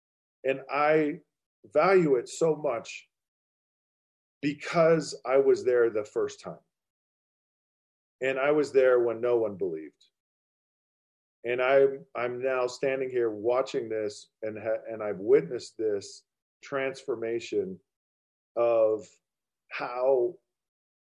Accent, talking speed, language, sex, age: American, 110 wpm, English, male, 40-59